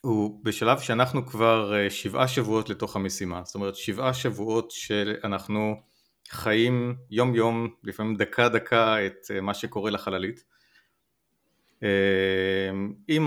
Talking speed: 110 wpm